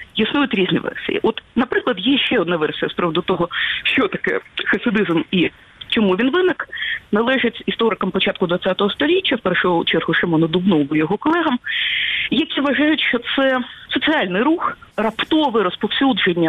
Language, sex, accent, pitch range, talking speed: Ukrainian, female, native, 190-265 Hz, 140 wpm